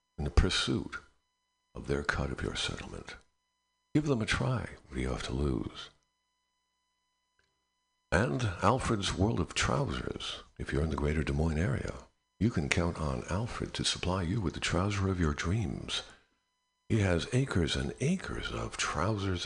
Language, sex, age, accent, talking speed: English, male, 60-79, American, 160 wpm